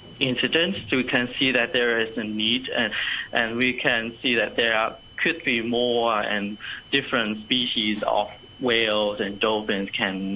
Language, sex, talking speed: English, male, 170 wpm